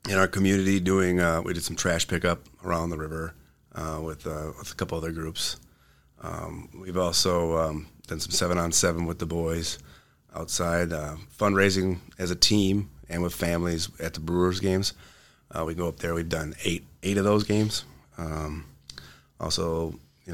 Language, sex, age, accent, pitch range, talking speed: English, male, 30-49, American, 80-90 Hz, 180 wpm